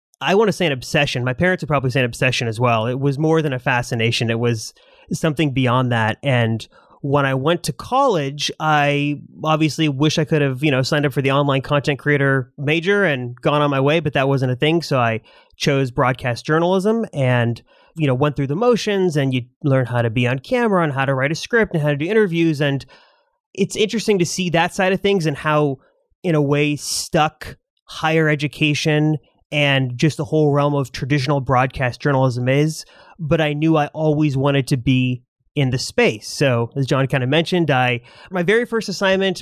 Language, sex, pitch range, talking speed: English, male, 135-165 Hz, 210 wpm